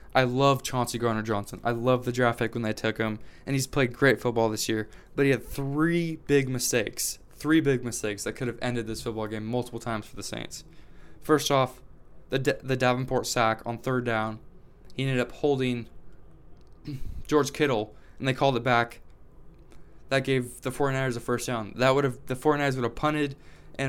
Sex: male